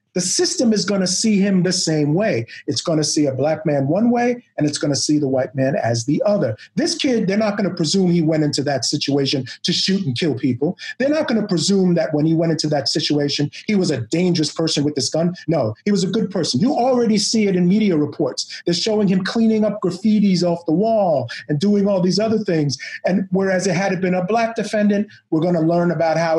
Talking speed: 235 wpm